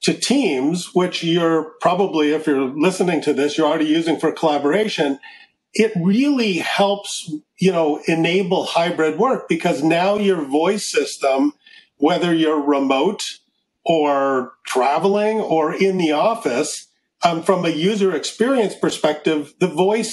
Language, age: English, 50-69